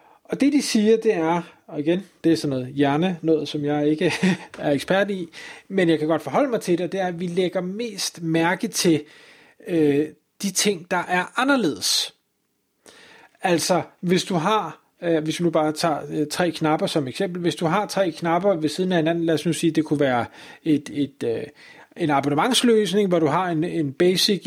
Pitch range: 155-195 Hz